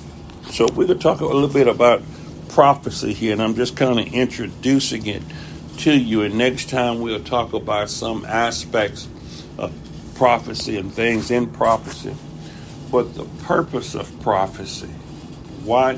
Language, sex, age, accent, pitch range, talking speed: English, male, 60-79, American, 110-135 Hz, 145 wpm